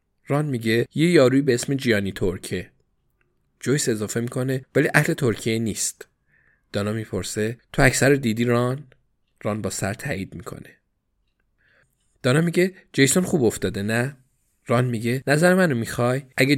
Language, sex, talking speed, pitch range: Persian, male, 140 wpm, 105-130 Hz